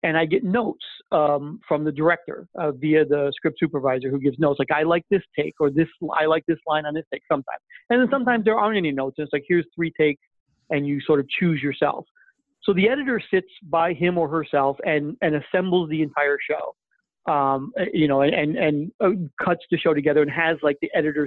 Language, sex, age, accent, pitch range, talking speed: English, male, 40-59, American, 150-180 Hz, 230 wpm